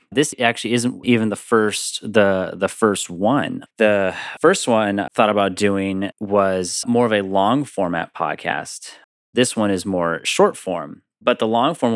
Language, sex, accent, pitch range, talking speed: English, male, American, 95-115 Hz, 155 wpm